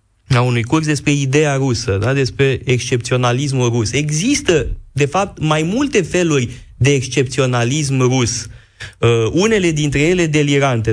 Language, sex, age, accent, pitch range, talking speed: Romanian, male, 30-49, native, 125-185 Hz, 130 wpm